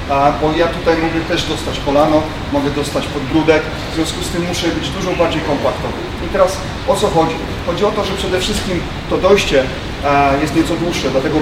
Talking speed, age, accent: 190 wpm, 30-49, native